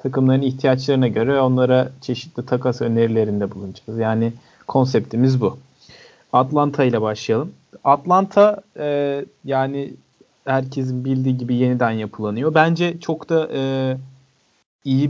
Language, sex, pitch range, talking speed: Turkish, male, 120-150 Hz, 105 wpm